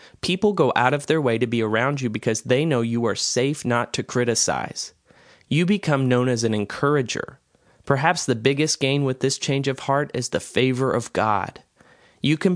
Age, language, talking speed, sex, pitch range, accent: 30-49, English, 195 wpm, male, 115-140 Hz, American